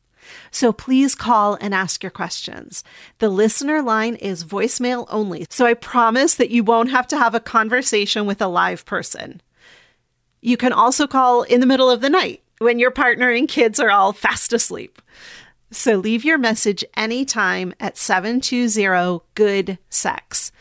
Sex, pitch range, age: female, 195-250 Hz, 30-49